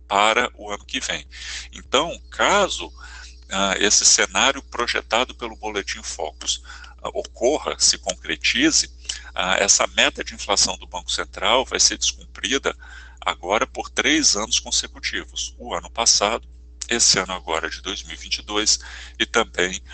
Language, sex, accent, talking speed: Portuguese, male, Brazilian, 130 wpm